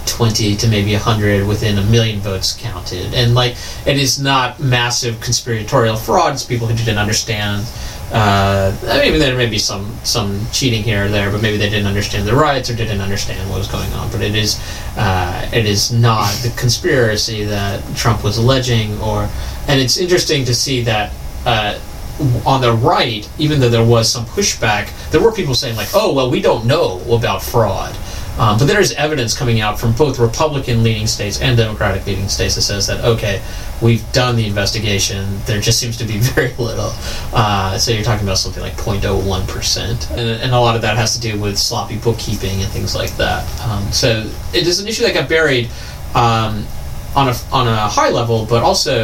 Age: 30-49